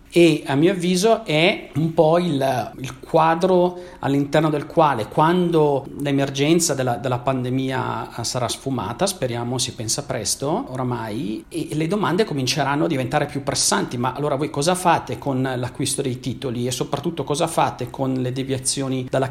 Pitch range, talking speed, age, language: 130-160 Hz, 155 wpm, 40-59, Italian